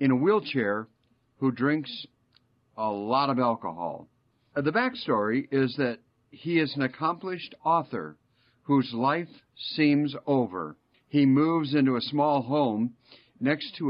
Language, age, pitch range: English, 50-69, 120-145 Hz